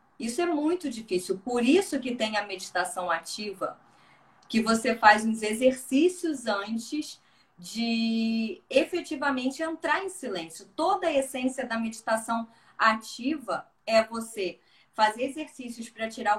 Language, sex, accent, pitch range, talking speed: Portuguese, female, Brazilian, 190-260 Hz, 125 wpm